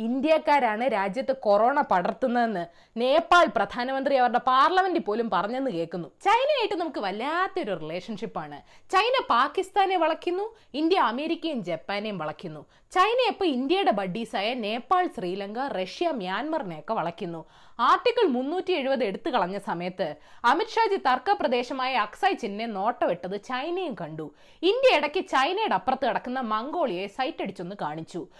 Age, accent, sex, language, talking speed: 20-39, native, female, Malayalam, 110 wpm